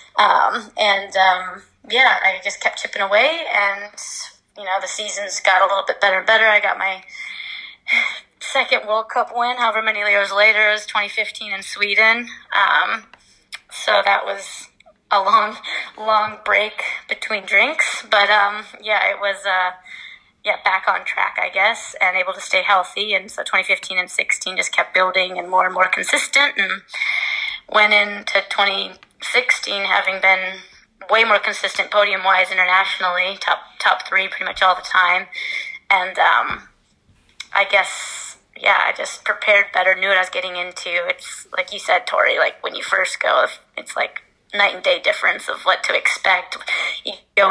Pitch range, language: 190-220 Hz, English